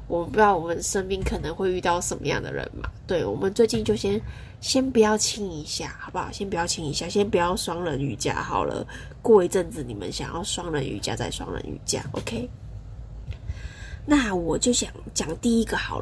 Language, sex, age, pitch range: Chinese, female, 20-39, 150-210 Hz